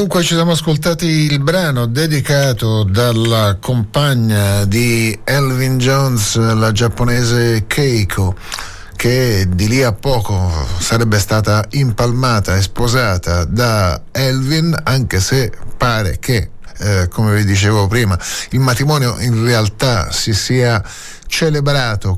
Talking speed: 115 wpm